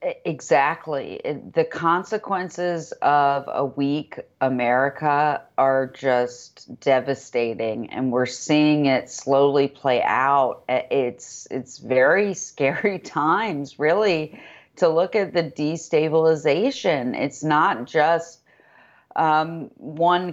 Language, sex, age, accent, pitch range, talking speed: English, female, 30-49, American, 140-180 Hz, 95 wpm